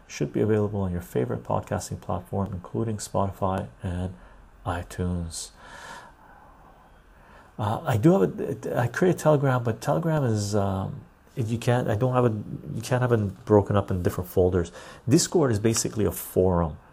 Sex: male